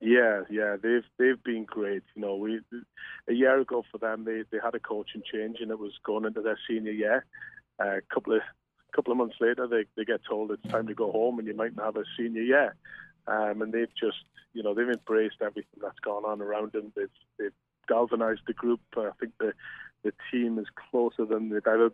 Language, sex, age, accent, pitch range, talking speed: English, male, 30-49, British, 110-120 Hz, 225 wpm